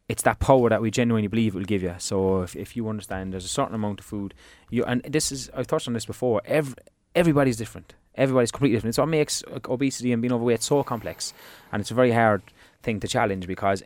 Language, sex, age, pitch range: English, male, 20-39, 100-125 Hz